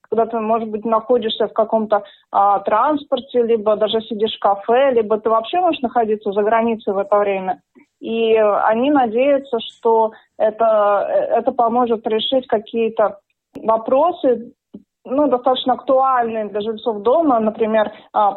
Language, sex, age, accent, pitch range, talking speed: Russian, female, 20-39, native, 220-245 Hz, 135 wpm